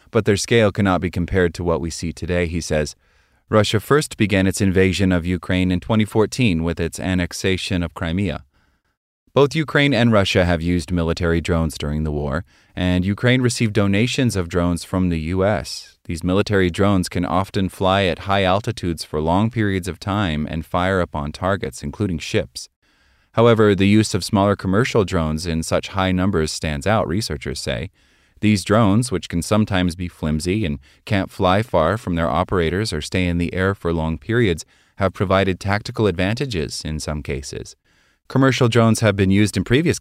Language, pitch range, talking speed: English, 85-105 Hz, 175 wpm